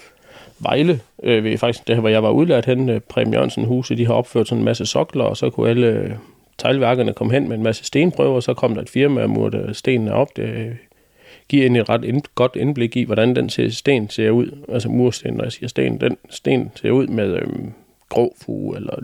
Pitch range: 110-125 Hz